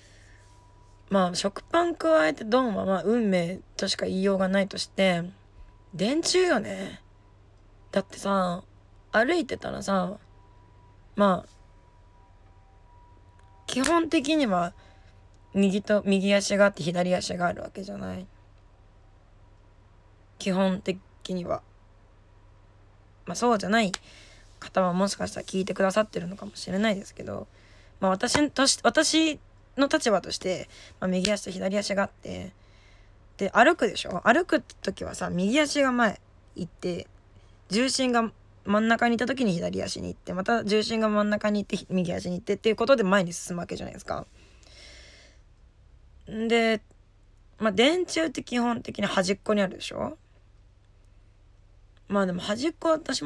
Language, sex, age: Japanese, female, 20-39